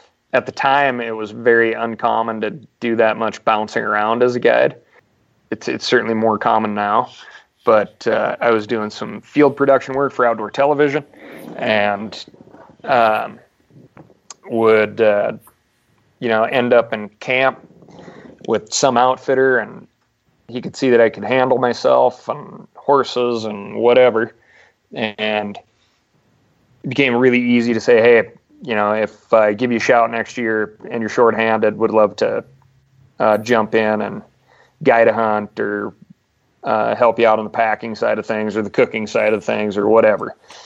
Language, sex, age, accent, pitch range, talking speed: English, male, 30-49, American, 110-120 Hz, 160 wpm